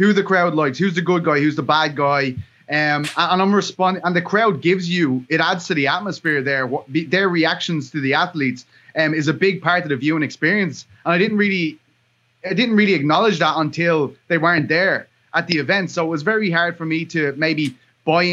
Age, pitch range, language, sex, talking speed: 20-39, 150-180 Hz, English, male, 230 wpm